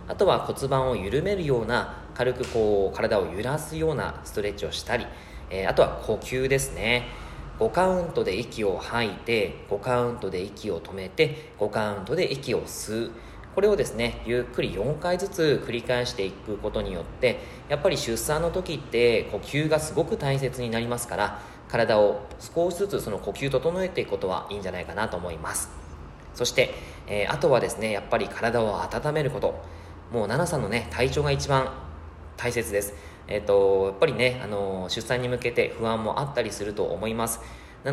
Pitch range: 100-130 Hz